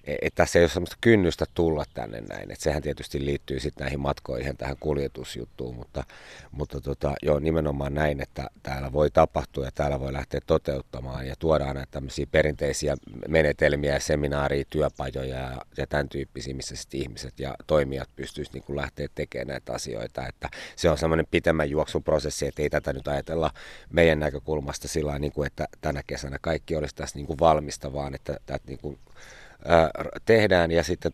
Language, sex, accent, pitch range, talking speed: Finnish, male, native, 70-80 Hz, 165 wpm